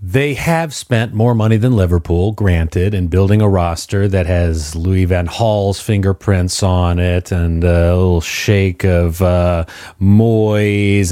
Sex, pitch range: male, 95-120 Hz